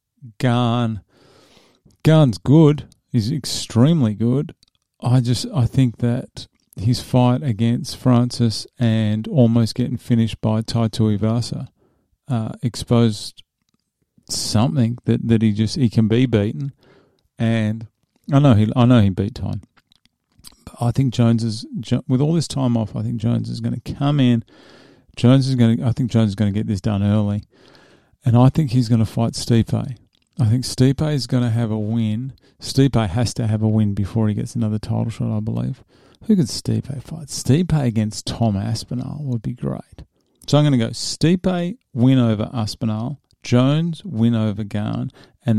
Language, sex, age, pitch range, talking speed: English, male, 50-69, 110-130 Hz, 170 wpm